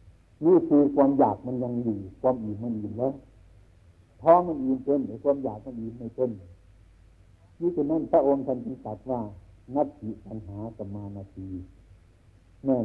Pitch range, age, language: 95-125 Hz, 60-79, Thai